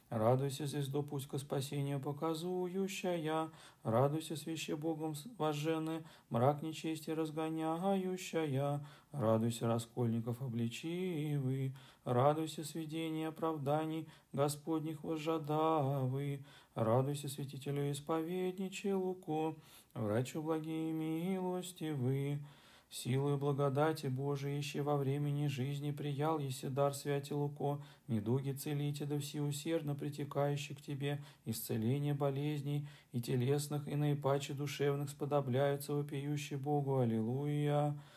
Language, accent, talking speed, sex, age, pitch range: Russian, native, 95 wpm, male, 40-59, 140-160 Hz